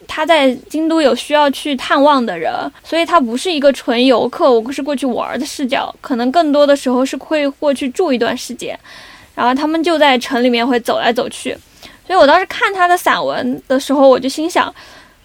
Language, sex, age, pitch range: Chinese, female, 20-39, 255-310 Hz